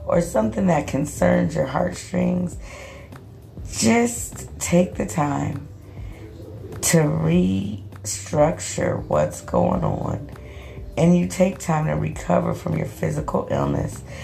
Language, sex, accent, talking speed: English, female, American, 105 wpm